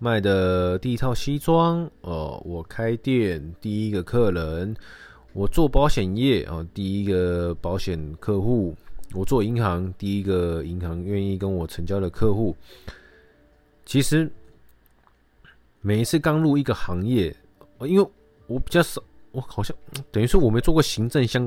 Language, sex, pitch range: Chinese, male, 90-120 Hz